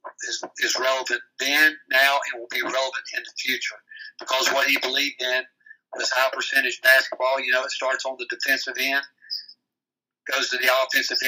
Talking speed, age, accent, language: 175 wpm, 50-69, American, English